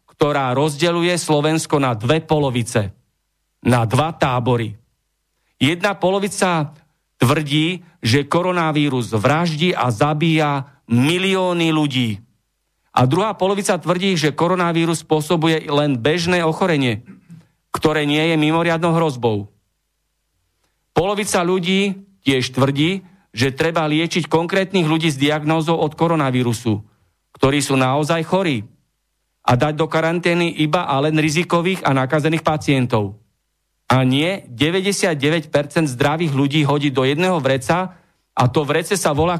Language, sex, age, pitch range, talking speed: Slovak, male, 40-59, 130-170 Hz, 115 wpm